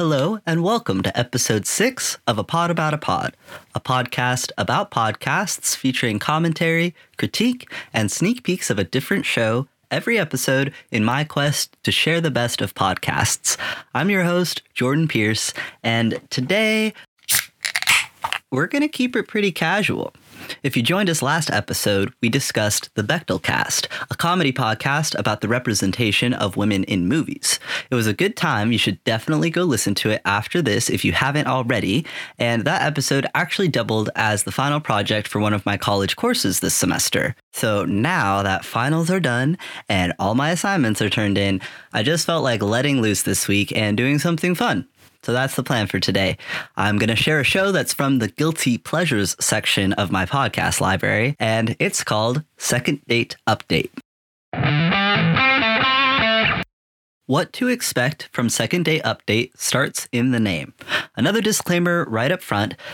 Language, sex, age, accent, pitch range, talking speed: English, male, 20-39, American, 110-165 Hz, 165 wpm